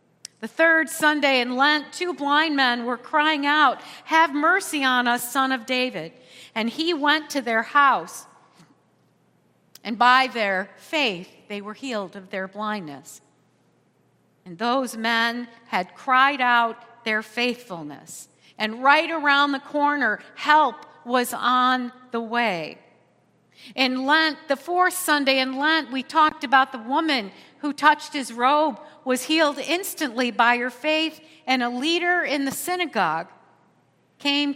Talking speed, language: 140 wpm, English